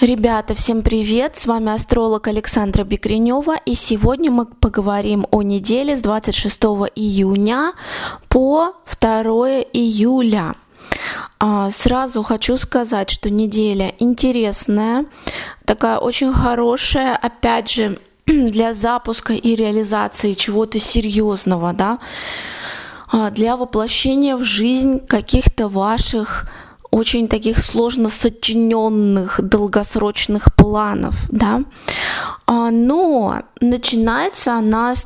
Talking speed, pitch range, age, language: 95 wpm, 215-245 Hz, 20-39, Russian